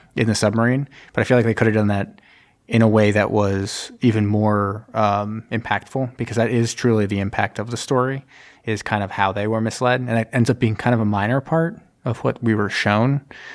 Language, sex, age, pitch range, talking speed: English, male, 20-39, 105-120 Hz, 230 wpm